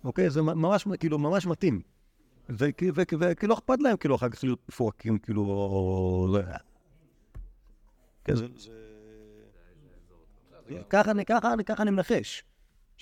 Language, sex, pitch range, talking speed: Hebrew, male, 105-145 Hz, 90 wpm